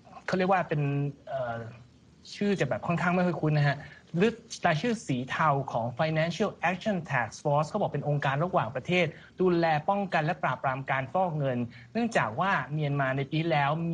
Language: Thai